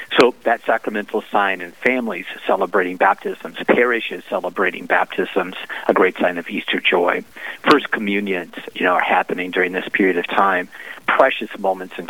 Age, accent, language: 50-69, American, English